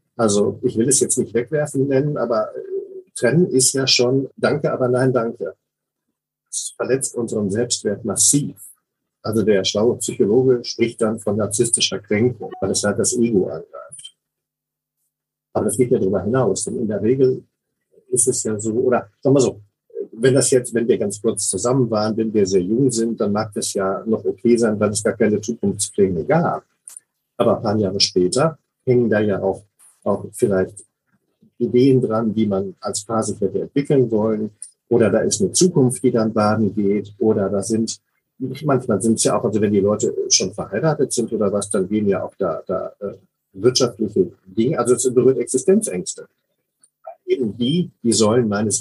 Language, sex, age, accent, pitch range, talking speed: German, male, 50-69, German, 105-135 Hz, 180 wpm